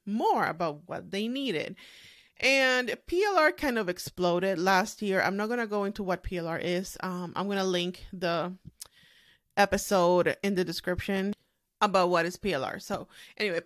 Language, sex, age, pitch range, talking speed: English, female, 30-49, 180-235 Hz, 165 wpm